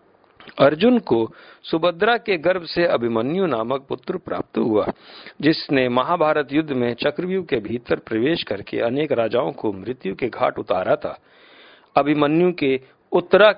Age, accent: 50-69, native